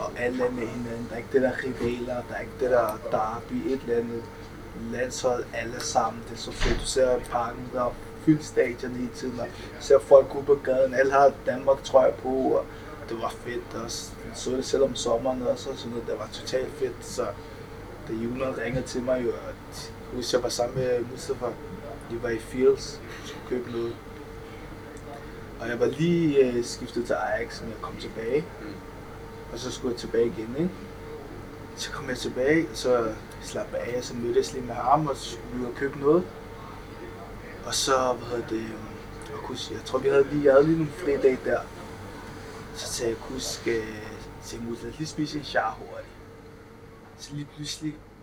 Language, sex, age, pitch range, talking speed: Danish, male, 20-39, 115-145 Hz, 200 wpm